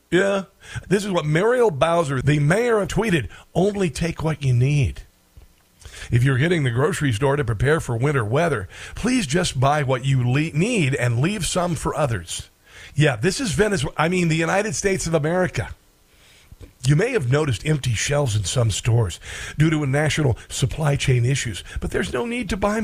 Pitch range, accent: 130-185 Hz, American